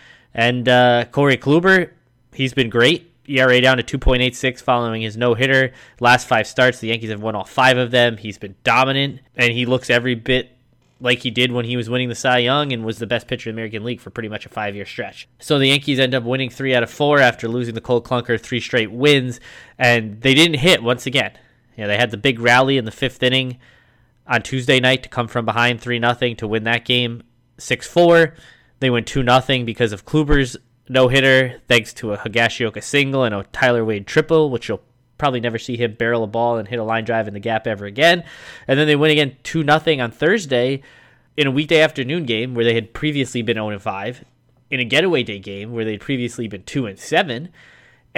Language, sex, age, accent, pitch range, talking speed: English, male, 20-39, American, 115-135 Hz, 215 wpm